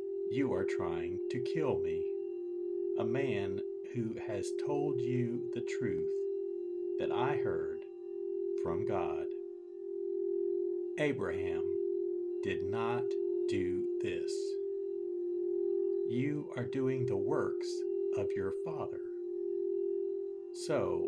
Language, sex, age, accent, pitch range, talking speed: English, male, 50-69, American, 370-390 Hz, 95 wpm